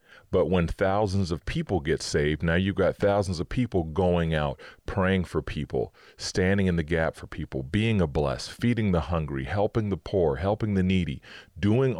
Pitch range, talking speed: 80-100 Hz, 185 wpm